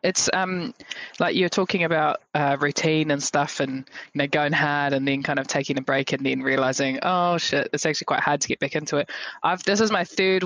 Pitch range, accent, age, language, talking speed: 145-180 Hz, Australian, 20-39, English, 235 wpm